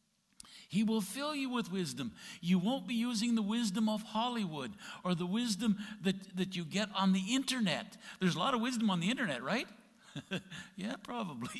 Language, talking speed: English, 180 wpm